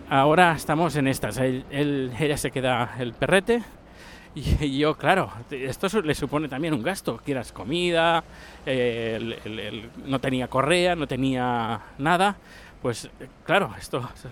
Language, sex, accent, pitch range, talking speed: Spanish, male, Spanish, 120-160 Hz, 150 wpm